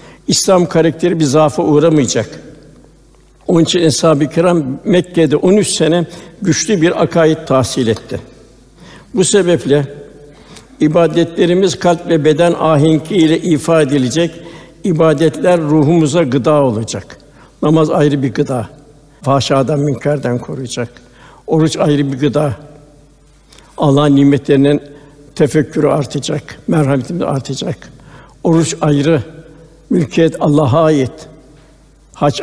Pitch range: 145-165 Hz